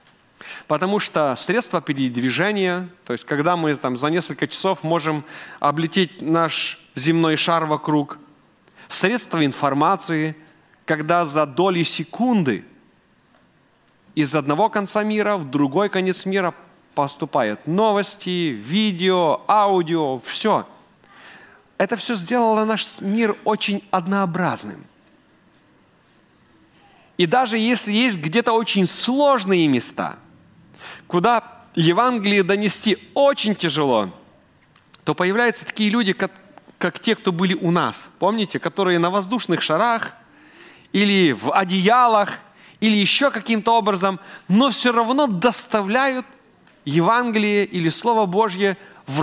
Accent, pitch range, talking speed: native, 165-220 Hz, 105 wpm